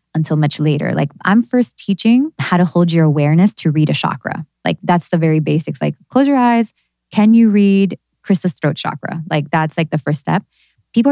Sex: female